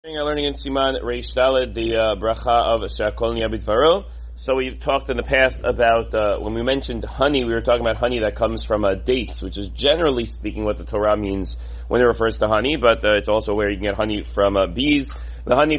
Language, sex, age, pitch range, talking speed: English, male, 30-49, 100-135 Hz, 225 wpm